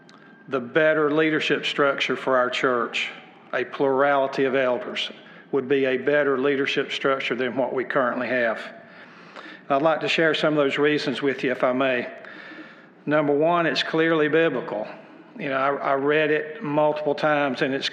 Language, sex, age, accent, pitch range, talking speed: English, male, 50-69, American, 135-155 Hz, 165 wpm